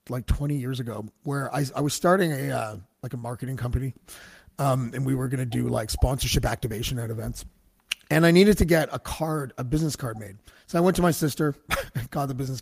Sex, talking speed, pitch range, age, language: male, 225 wpm, 125-165 Hz, 30-49, English